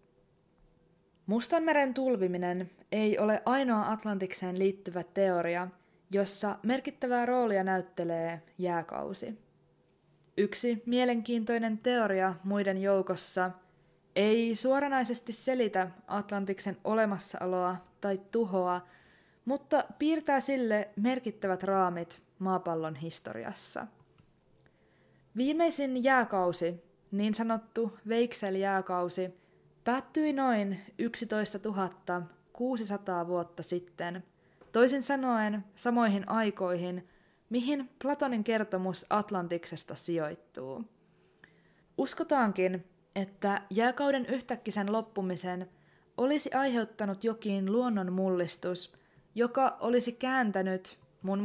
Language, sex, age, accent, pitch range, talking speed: Finnish, female, 20-39, native, 180-240 Hz, 75 wpm